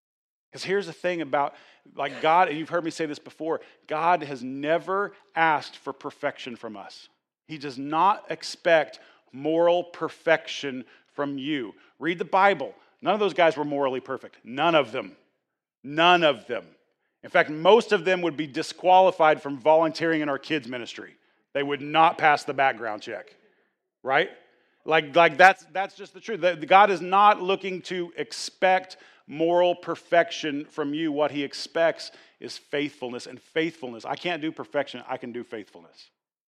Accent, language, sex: American, English, male